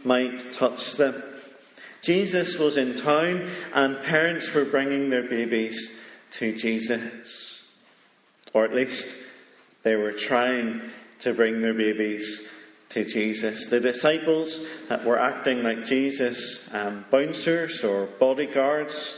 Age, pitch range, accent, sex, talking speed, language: 40-59, 110-130 Hz, British, male, 120 wpm, English